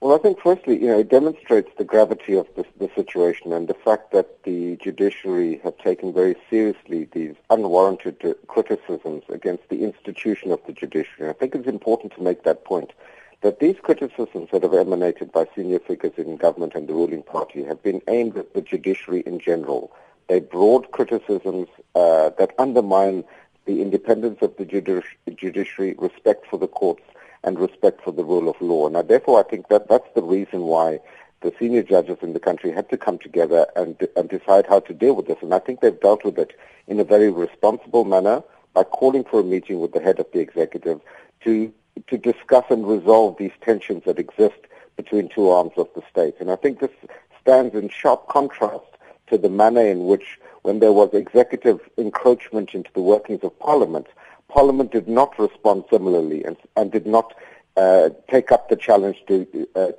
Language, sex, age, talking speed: English, male, 50-69, 190 wpm